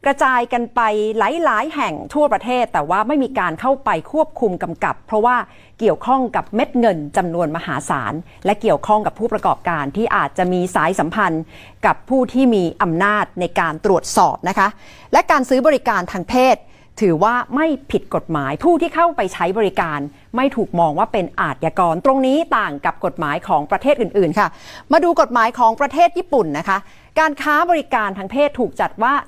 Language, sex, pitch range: Thai, female, 180-255 Hz